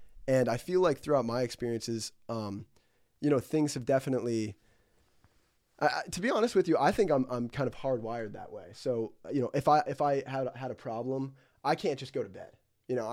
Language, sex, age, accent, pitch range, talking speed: English, male, 20-39, American, 110-135 Hz, 215 wpm